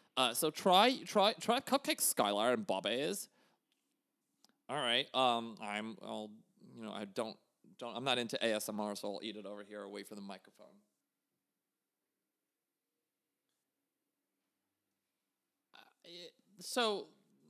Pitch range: 115-195 Hz